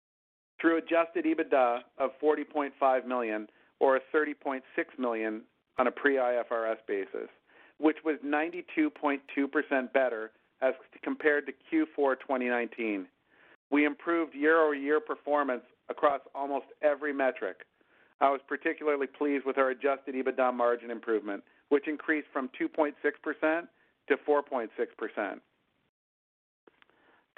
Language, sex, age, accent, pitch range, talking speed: English, male, 50-69, American, 125-150 Hz, 105 wpm